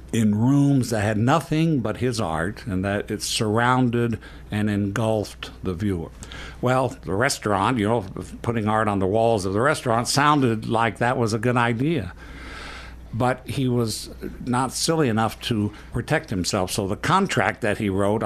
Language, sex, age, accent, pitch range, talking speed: English, male, 60-79, American, 100-125 Hz, 170 wpm